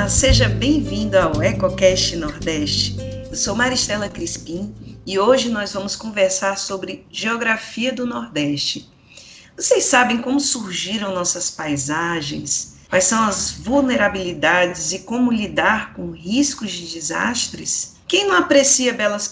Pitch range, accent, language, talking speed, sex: 170-235 Hz, Brazilian, Portuguese, 120 wpm, female